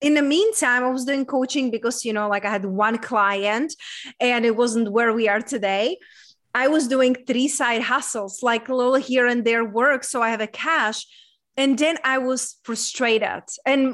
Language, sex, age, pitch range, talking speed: English, female, 20-39, 230-280 Hz, 200 wpm